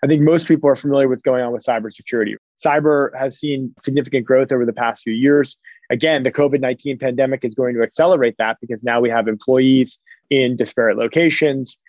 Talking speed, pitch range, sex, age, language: 195 wpm, 130-150 Hz, male, 20-39, English